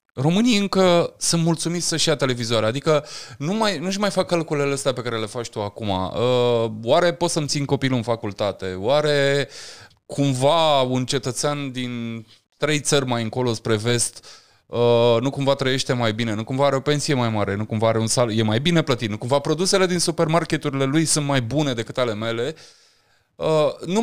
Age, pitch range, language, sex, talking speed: 20-39, 115-155 Hz, Romanian, male, 180 wpm